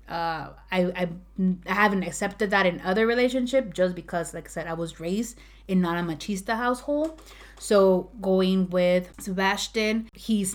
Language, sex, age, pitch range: English, female, 20-39, 175-195 Hz